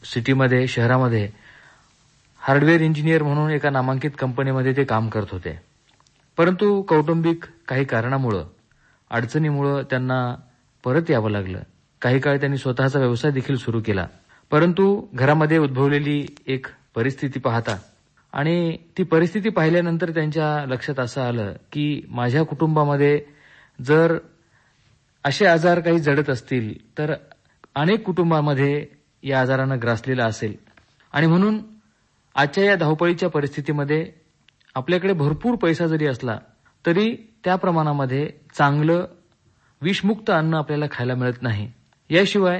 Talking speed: 115 wpm